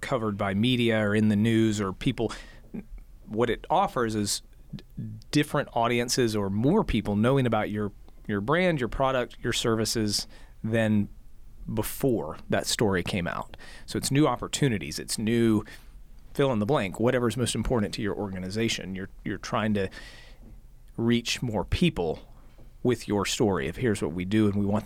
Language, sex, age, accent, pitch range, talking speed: English, male, 40-59, American, 105-125 Hz, 165 wpm